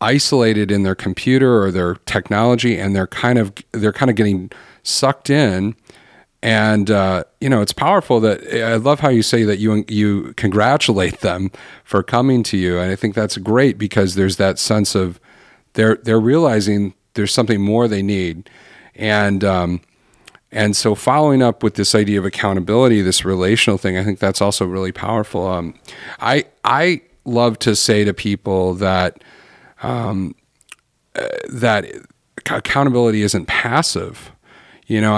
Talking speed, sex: 155 wpm, male